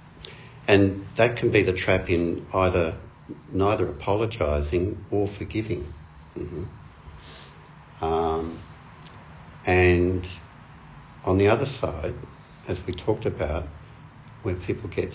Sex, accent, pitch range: male, Australian, 80-95 Hz